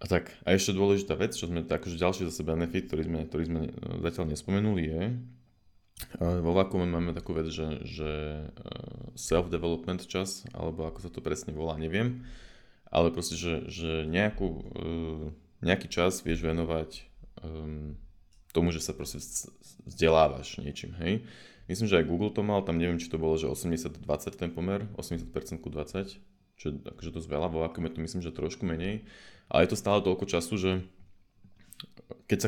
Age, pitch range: 20-39, 80-95 Hz